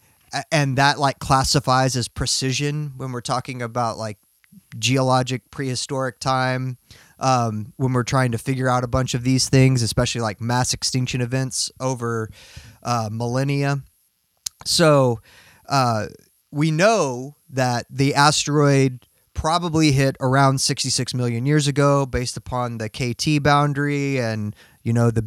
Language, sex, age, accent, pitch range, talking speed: English, male, 20-39, American, 120-140 Hz, 135 wpm